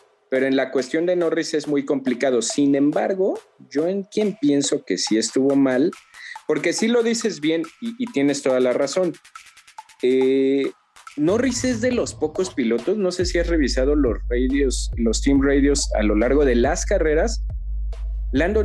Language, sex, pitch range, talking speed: Spanish, male, 120-180 Hz, 175 wpm